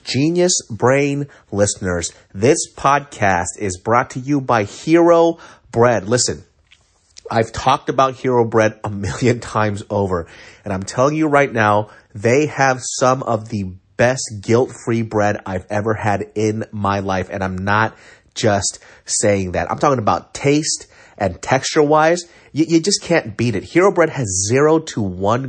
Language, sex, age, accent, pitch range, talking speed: English, male, 30-49, American, 100-140 Hz, 160 wpm